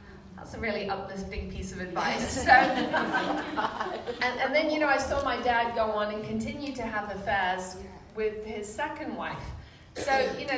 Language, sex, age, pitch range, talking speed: English, female, 30-49, 205-240 Hz, 175 wpm